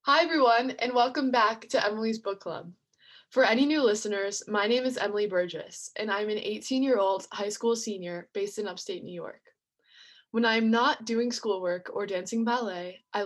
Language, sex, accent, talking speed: English, female, American, 175 wpm